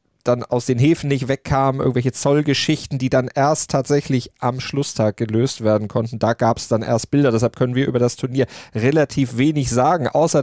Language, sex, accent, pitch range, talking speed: German, male, German, 105-130 Hz, 190 wpm